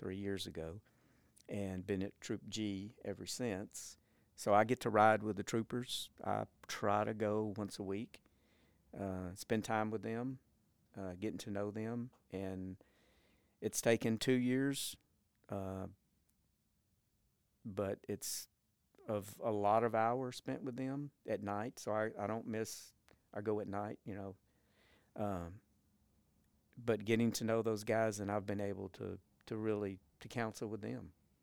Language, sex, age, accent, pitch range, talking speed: English, male, 50-69, American, 95-110 Hz, 155 wpm